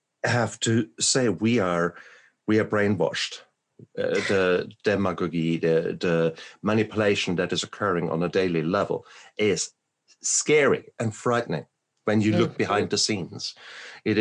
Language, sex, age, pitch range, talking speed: English, male, 50-69, 85-105 Hz, 135 wpm